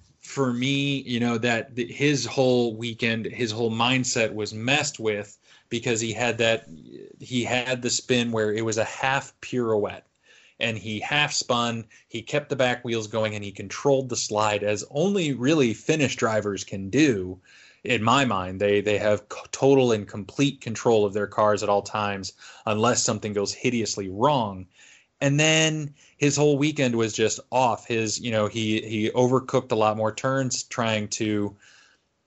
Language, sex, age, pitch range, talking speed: English, male, 20-39, 105-125 Hz, 170 wpm